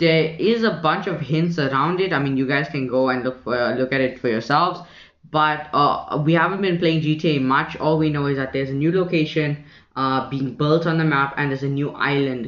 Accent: Indian